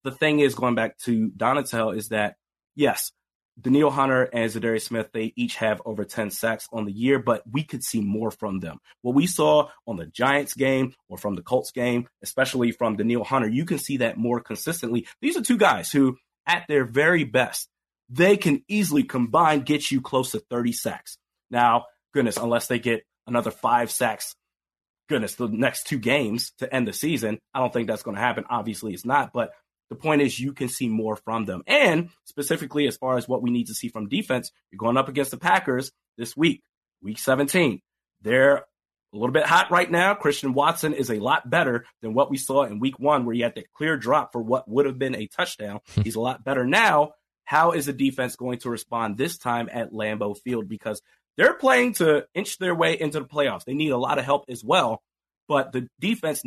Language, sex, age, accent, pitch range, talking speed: English, male, 30-49, American, 115-145 Hz, 215 wpm